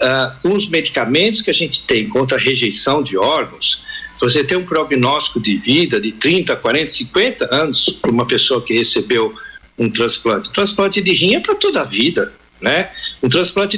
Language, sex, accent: Portuguese, male, Brazilian